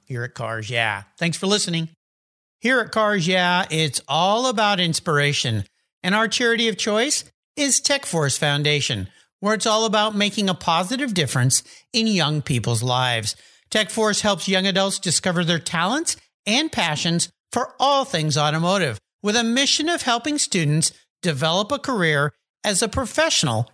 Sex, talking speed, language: male, 150 wpm, English